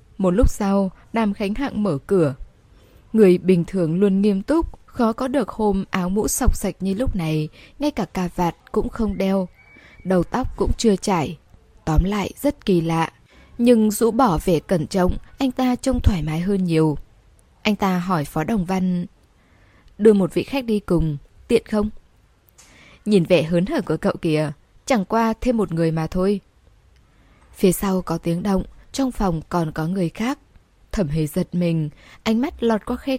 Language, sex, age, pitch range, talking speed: Vietnamese, female, 10-29, 160-215 Hz, 185 wpm